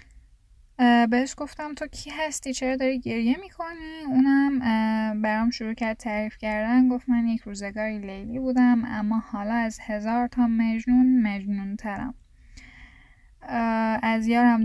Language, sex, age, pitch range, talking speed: Persian, female, 10-29, 220-250 Hz, 125 wpm